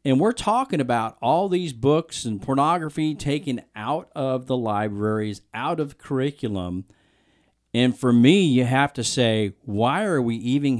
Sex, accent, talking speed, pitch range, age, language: male, American, 155 wpm, 115-155 Hz, 40-59, English